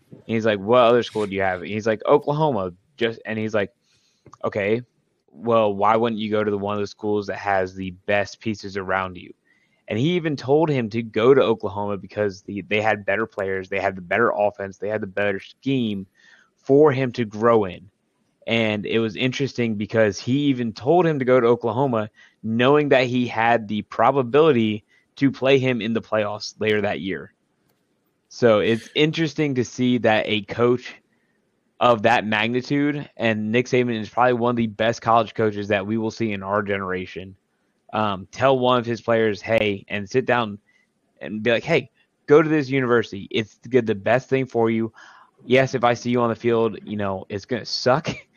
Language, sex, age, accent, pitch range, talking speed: English, male, 20-39, American, 105-125 Hz, 200 wpm